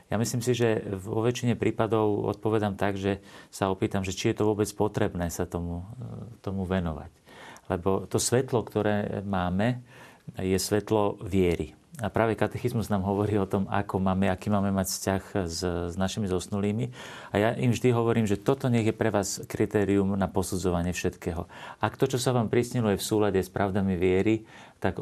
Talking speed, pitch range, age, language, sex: 175 wpm, 95-115 Hz, 40-59, Slovak, male